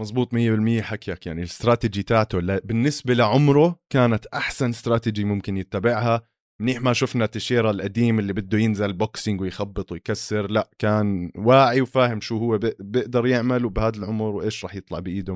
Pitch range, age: 100-125 Hz, 20-39